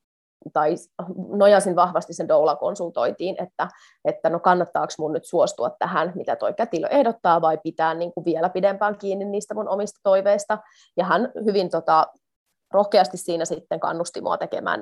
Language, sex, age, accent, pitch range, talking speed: Finnish, female, 30-49, native, 170-215 Hz, 155 wpm